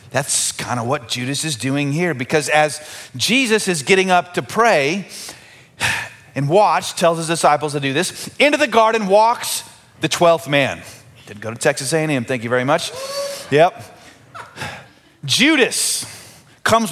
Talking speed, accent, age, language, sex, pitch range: 155 wpm, American, 30-49, English, male, 135-195 Hz